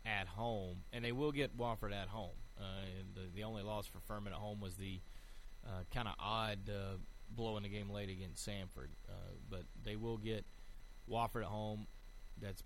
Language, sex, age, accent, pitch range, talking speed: English, male, 30-49, American, 95-110 Hz, 200 wpm